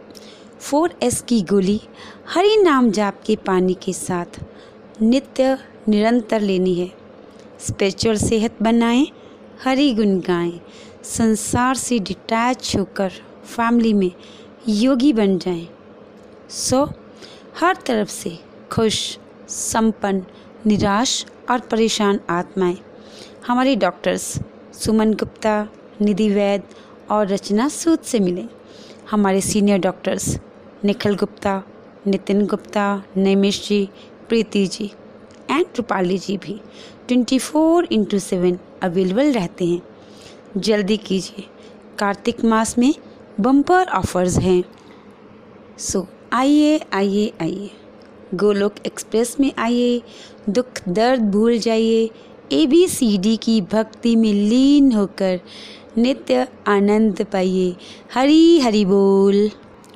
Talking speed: 105 wpm